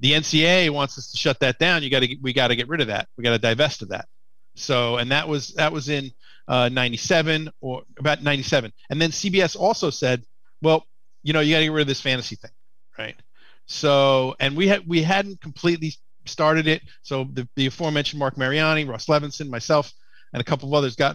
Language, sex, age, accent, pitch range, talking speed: English, male, 40-59, American, 125-150 Hz, 220 wpm